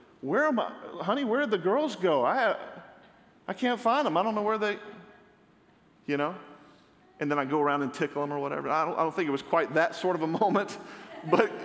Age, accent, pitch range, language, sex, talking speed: 40-59, American, 145-185 Hz, English, male, 230 wpm